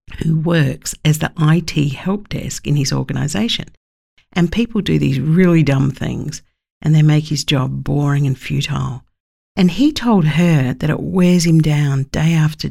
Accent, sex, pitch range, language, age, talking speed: Australian, female, 140-180 Hz, English, 50-69, 170 wpm